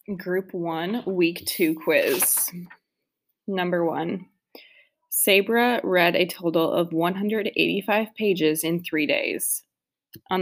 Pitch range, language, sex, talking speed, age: 170-205 Hz, English, female, 105 wpm, 20-39